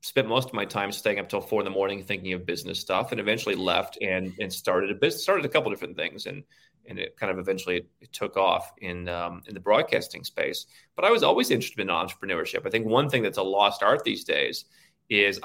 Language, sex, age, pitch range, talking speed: English, male, 30-49, 95-130 Hz, 245 wpm